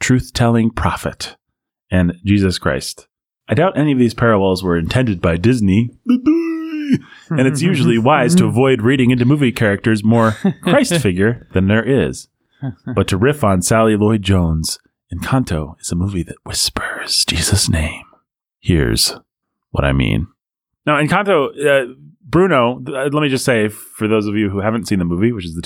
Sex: male